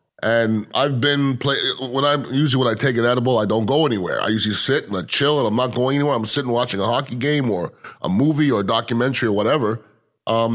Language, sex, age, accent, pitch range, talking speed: English, male, 30-49, American, 115-145 Hz, 240 wpm